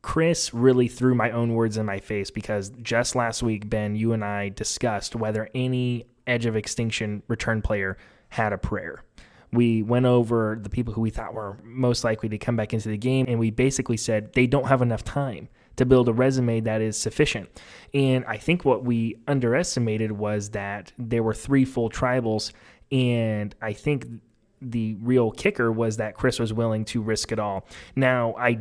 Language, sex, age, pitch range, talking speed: English, male, 20-39, 110-130 Hz, 190 wpm